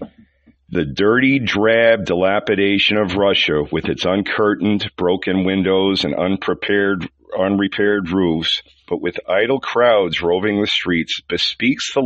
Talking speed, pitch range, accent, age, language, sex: 120 wpm, 95-115 Hz, American, 50-69, English, male